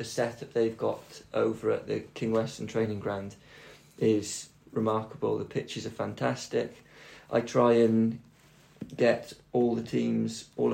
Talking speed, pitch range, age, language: 140 wpm, 110-115 Hz, 20-39, English